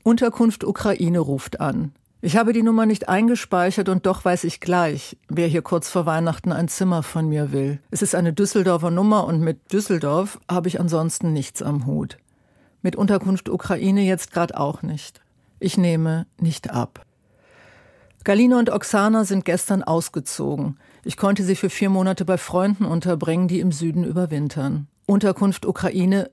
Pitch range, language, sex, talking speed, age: 160-195 Hz, German, female, 160 wpm, 50-69